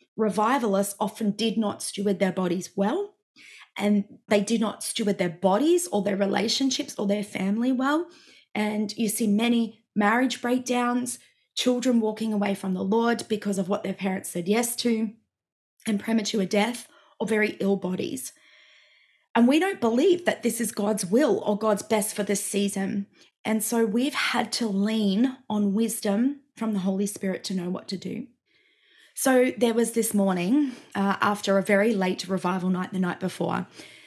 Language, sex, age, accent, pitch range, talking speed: English, female, 20-39, Australian, 195-235 Hz, 170 wpm